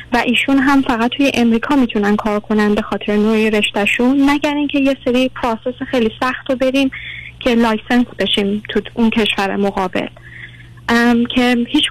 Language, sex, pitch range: Persian, female, 235-275 Hz